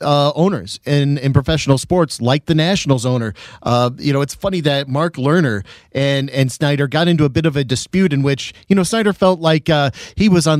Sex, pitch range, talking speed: male, 135-175 Hz, 220 wpm